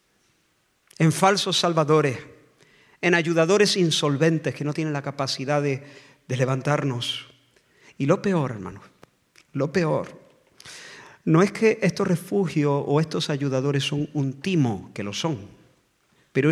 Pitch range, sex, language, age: 140-175 Hz, male, Spanish, 50-69